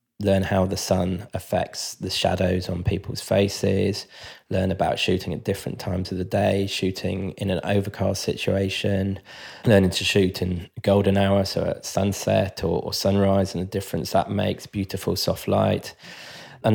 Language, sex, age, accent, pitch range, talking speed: English, male, 20-39, British, 90-100 Hz, 160 wpm